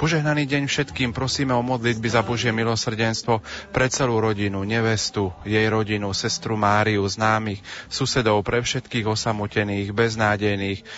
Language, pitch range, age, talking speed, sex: Slovak, 100-115 Hz, 30-49, 125 wpm, male